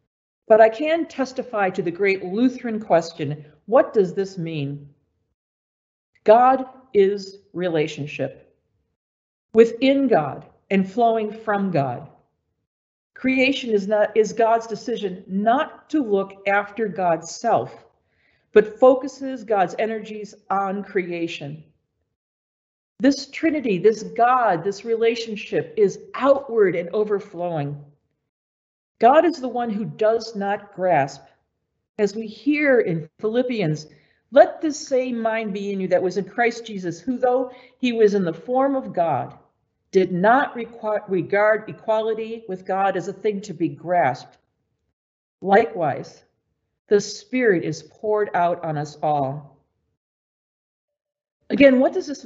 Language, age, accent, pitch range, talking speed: English, 50-69, American, 170-235 Hz, 125 wpm